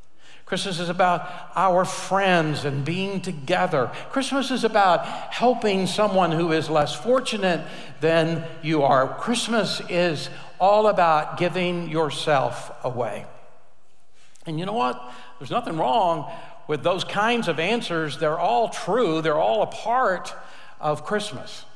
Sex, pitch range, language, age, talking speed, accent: male, 155-210 Hz, English, 60-79, 130 wpm, American